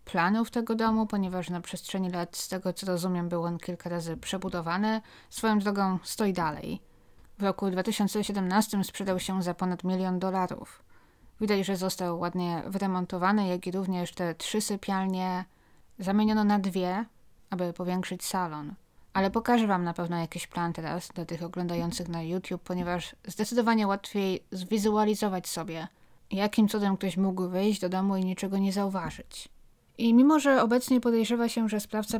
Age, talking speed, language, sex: 20-39, 155 wpm, Polish, female